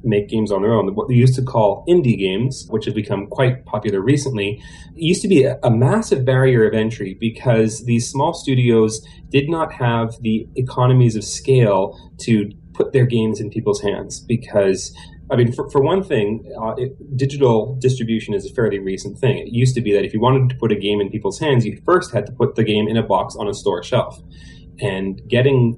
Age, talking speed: 30-49, 210 wpm